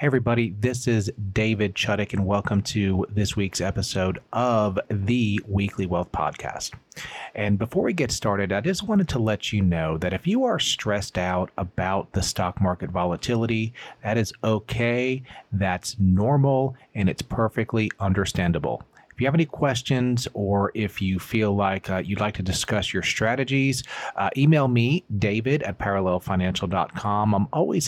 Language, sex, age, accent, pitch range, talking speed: English, male, 40-59, American, 100-125 Hz, 160 wpm